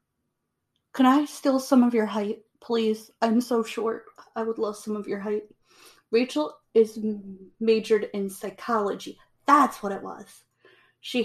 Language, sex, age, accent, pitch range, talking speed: English, female, 30-49, American, 200-245 Hz, 150 wpm